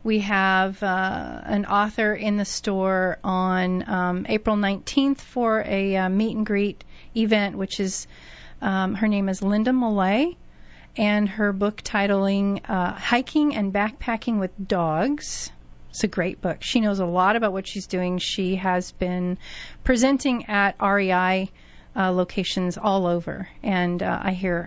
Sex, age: female, 40-59